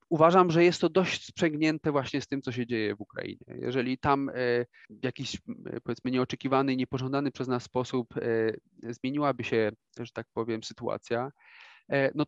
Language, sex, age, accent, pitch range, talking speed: Polish, male, 30-49, native, 120-140 Hz, 150 wpm